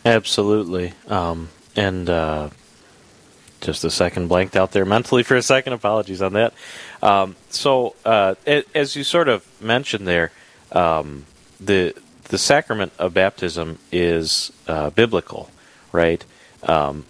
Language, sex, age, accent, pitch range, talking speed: English, male, 30-49, American, 85-105 Hz, 130 wpm